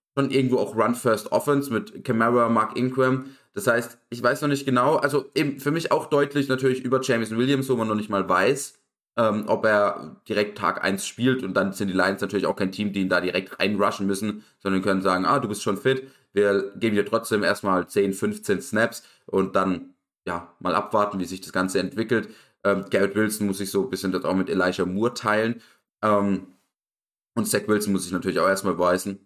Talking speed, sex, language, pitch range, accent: 210 wpm, male, German, 100-130 Hz, German